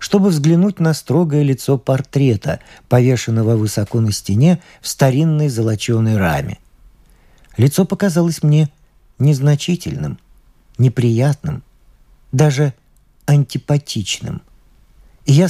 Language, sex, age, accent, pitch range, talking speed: Russian, male, 50-69, native, 120-155 Hz, 85 wpm